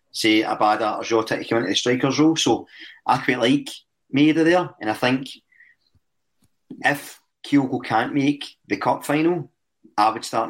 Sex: male